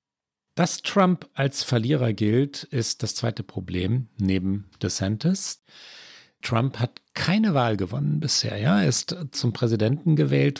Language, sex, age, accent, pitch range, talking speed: German, male, 40-59, German, 100-135 Hz, 130 wpm